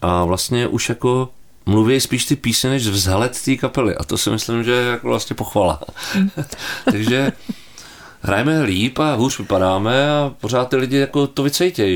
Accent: native